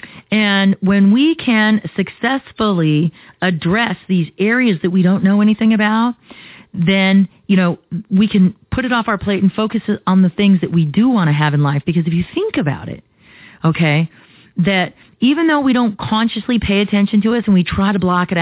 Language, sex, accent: English, female, American